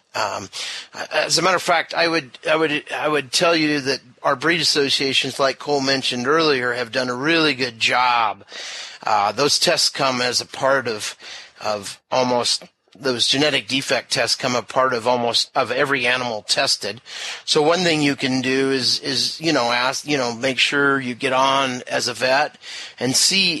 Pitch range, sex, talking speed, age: 125-165 Hz, male, 190 wpm, 40-59